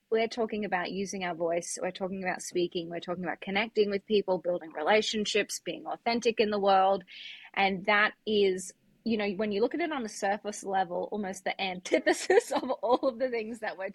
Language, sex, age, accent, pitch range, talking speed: English, female, 20-39, Australian, 190-220 Hz, 200 wpm